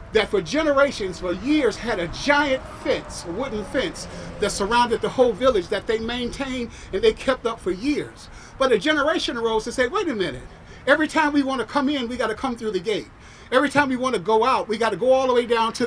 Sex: male